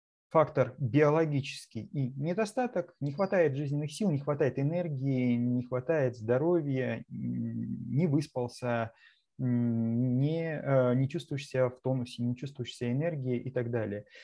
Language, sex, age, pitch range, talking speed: Russian, male, 20-39, 120-140 Hz, 120 wpm